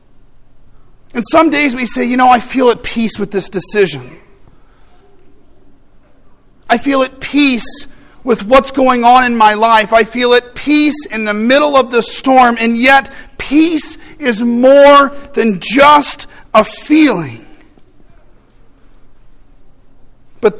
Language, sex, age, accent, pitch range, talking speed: English, male, 40-59, American, 205-250 Hz, 130 wpm